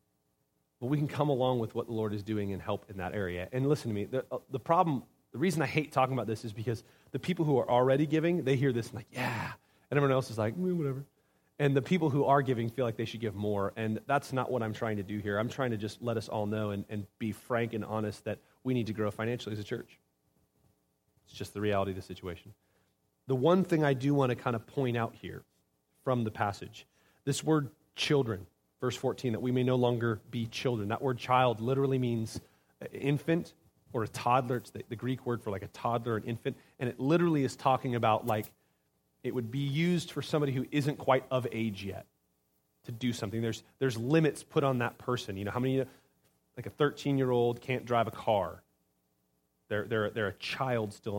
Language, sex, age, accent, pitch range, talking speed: English, male, 30-49, American, 105-130 Hz, 225 wpm